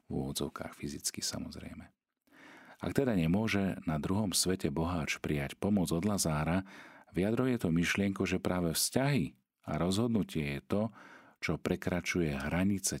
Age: 40-59